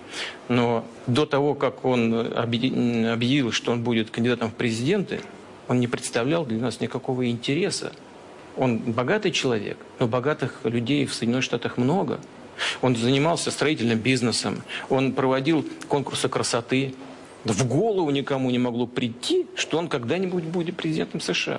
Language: Russian